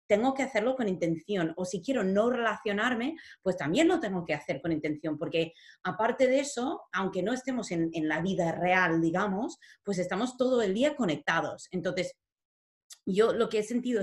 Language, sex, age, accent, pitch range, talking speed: English, female, 30-49, Spanish, 175-255 Hz, 185 wpm